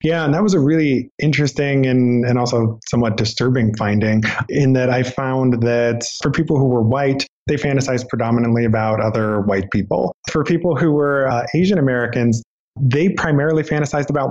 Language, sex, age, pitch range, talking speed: English, male, 20-39, 115-135 Hz, 170 wpm